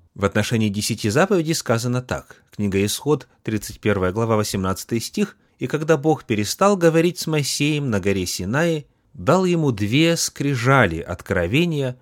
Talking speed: 135 wpm